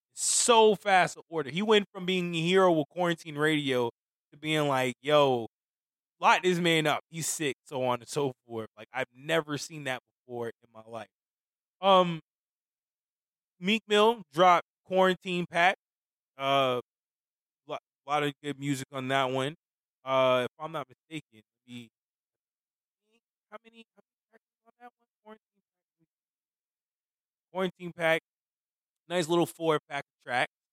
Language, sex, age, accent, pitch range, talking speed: English, male, 20-39, American, 130-185 Hz, 140 wpm